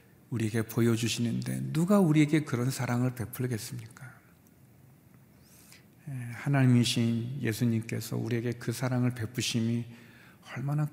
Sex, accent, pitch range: male, native, 120-170 Hz